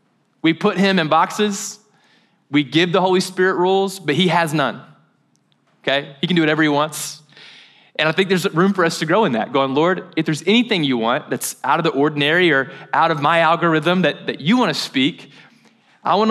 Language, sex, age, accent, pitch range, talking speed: English, male, 20-39, American, 145-185 Hz, 215 wpm